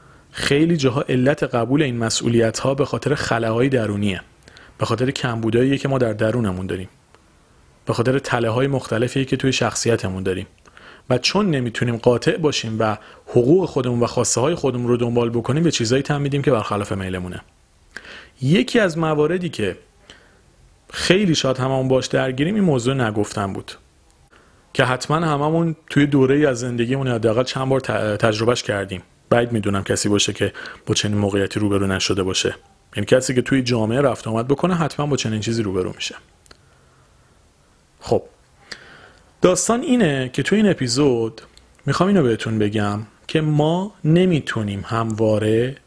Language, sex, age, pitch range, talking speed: Persian, male, 40-59, 110-140 Hz, 145 wpm